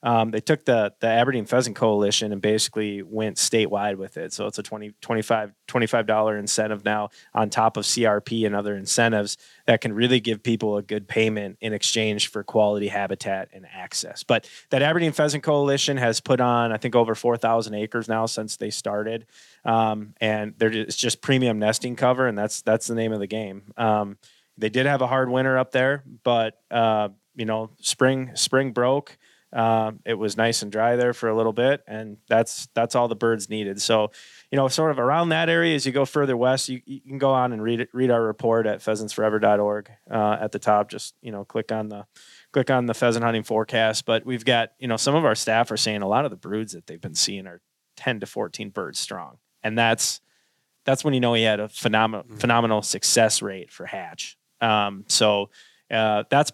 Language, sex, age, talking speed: English, male, 20-39, 210 wpm